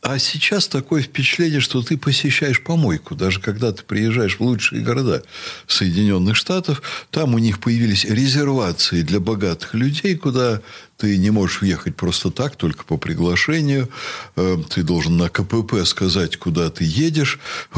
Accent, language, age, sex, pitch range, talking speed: native, Russian, 60-79, male, 95-140 Hz, 145 wpm